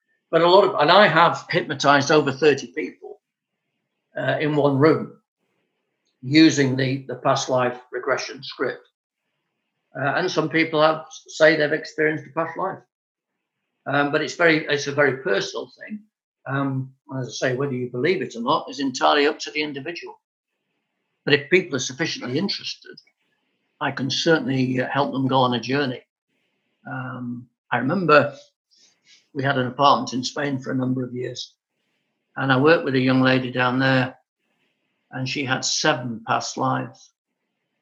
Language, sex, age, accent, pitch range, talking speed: English, male, 60-79, British, 130-160 Hz, 160 wpm